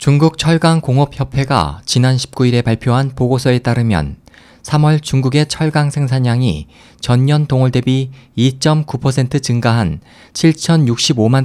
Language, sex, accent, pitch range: Korean, male, native, 115-150 Hz